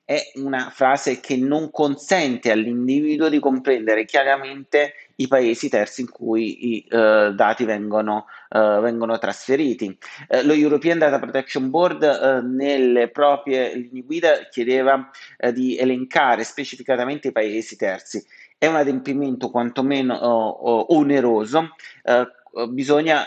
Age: 30-49